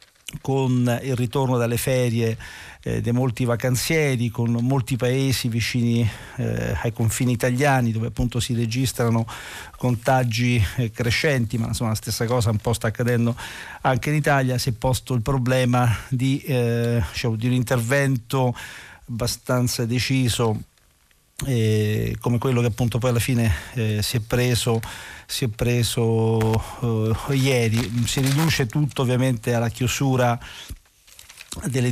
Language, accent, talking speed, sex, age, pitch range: Italian, native, 135 wpm, male, 50-69, 115-130 Hz